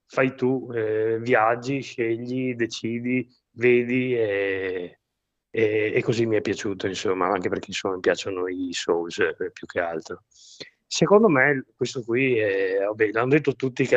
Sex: male